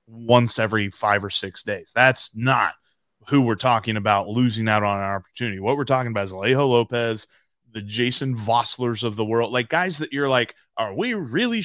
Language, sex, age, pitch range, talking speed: English, male, 30-49, 110-140 Hz, 195 wpm